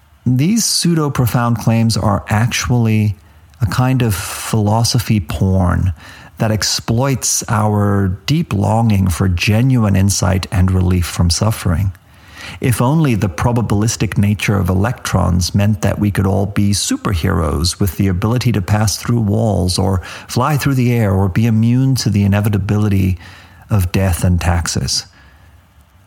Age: 40-59